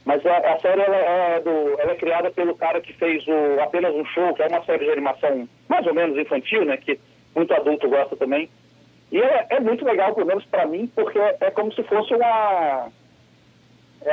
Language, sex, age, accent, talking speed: Portuguese, male, 40-59, Brazilian, 210 wpm